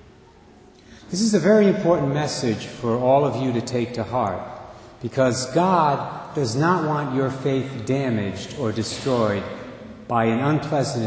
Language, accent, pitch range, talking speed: English, American, 110-155 Hz, 145 wpm